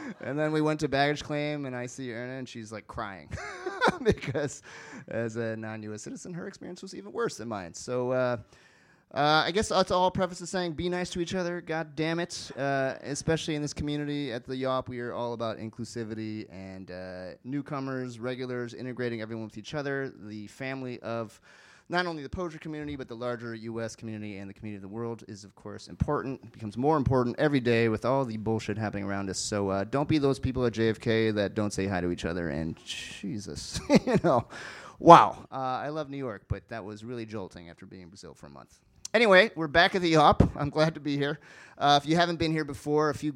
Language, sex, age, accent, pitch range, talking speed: English, male, 30-49, American, 110-145 Hz, 220 wpm